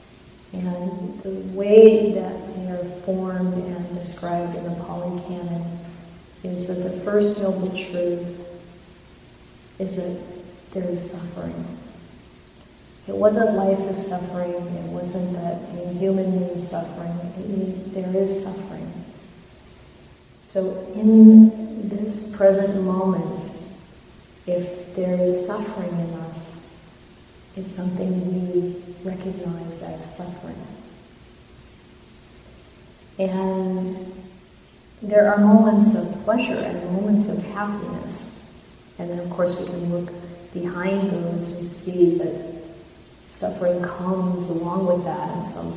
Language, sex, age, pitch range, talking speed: English, female, 40-59, 175-195 Hz, 115 wpm